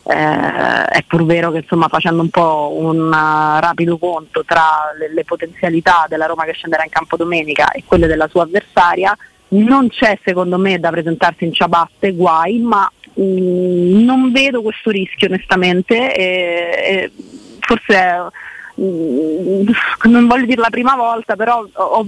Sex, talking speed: female, 150 wpm